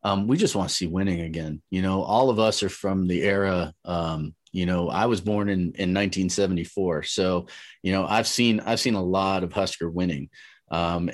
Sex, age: male, 30-49